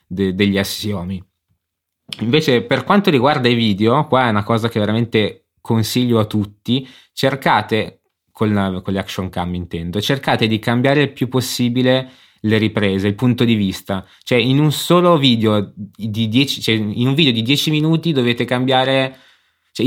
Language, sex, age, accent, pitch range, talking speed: Italian, male, 20-39, native, 105-130 Hz, 165 wpm